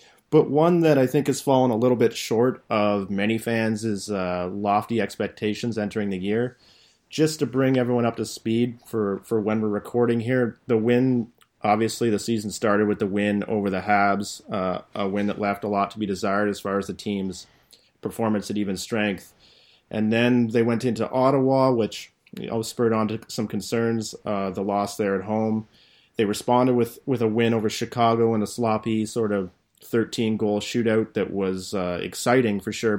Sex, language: male, English